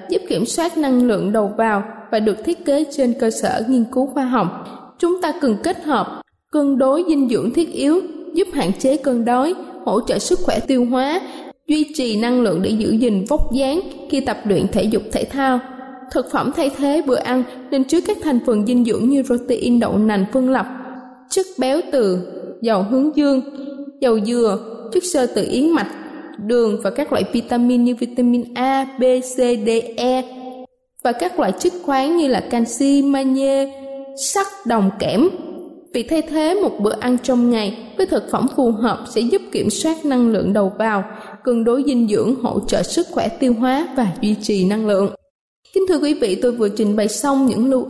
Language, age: Vietnamese, 20-39